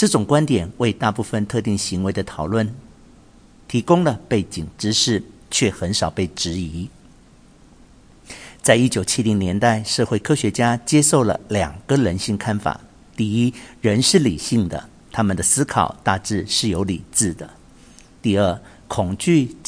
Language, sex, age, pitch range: Chinese, male, 50-69, 100-125 Hz